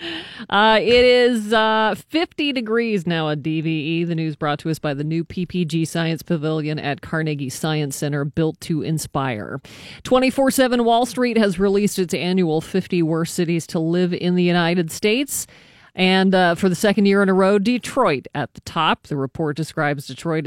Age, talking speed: 40-59, 175 wpm